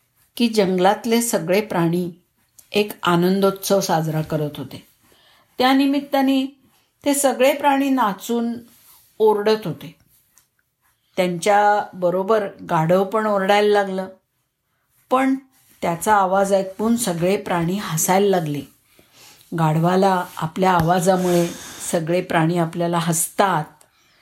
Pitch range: 170-225 Hz